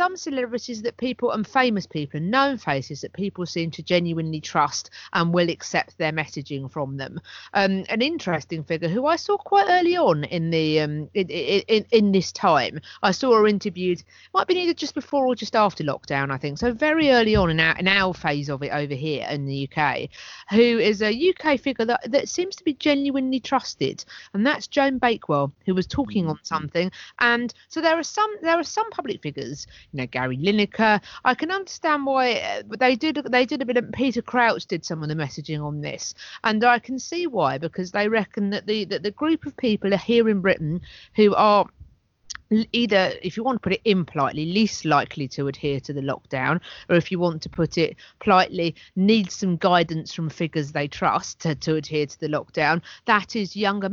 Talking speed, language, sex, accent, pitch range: 210 wpm, English, female, British, 160-245 Hz